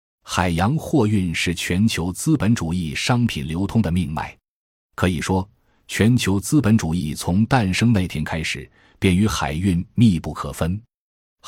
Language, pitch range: Chinese, 85-115 Hz